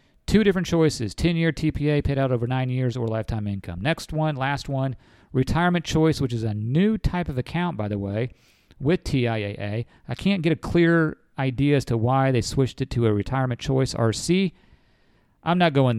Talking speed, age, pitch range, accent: 190 wpm, 40-59, 115-155 Hz, American